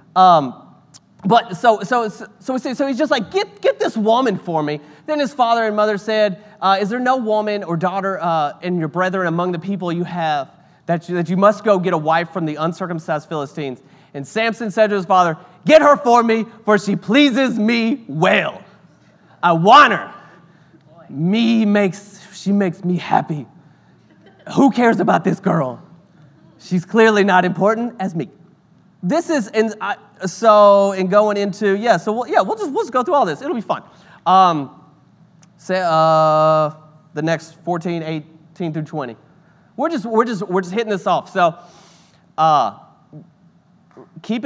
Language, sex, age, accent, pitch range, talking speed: English, male, 30-49, American, 165-215 Hz, 175 wpm